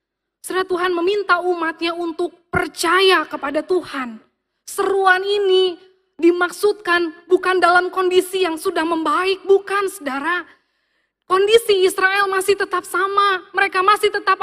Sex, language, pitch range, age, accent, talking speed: female, Indonesian, 270-360 Hz, 20-39, native, 110 wpm